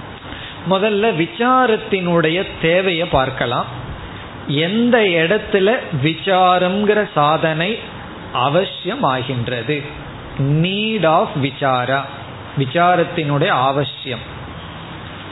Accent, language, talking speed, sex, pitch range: native, Tamil, 60 wpm, male, 140-180 Hz